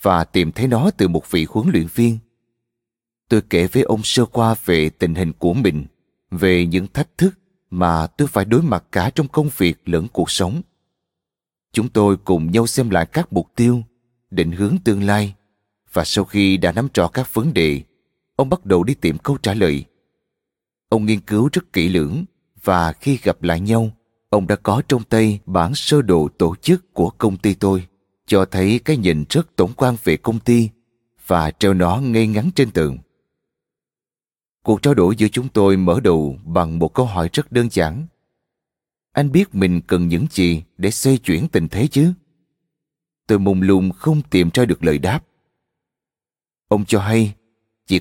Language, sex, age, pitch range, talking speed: Vietnamese, male, 20-39, 90-120 Hz, 185 wpm